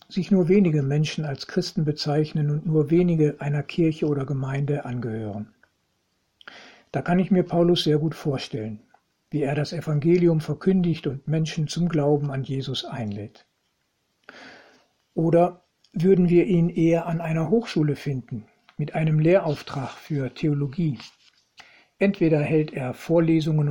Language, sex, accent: German, male, German